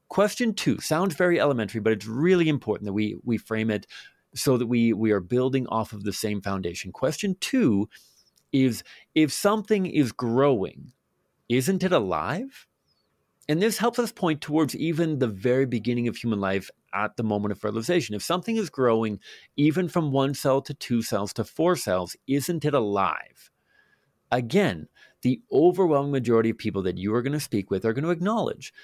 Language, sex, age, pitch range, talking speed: English, male, 40-59, 105-155 Hz, 180 wpm